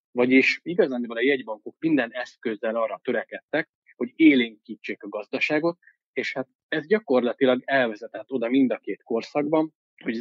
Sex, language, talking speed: male, Hungarian, 135 wpm